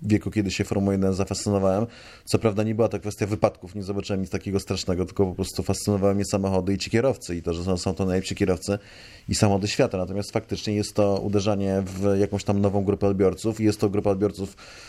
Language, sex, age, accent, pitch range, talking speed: Polish, male, 20-39, native, 100-110 Hz, 215 wpm